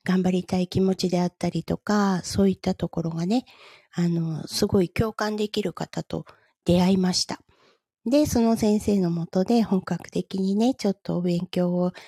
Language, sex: Japanese, female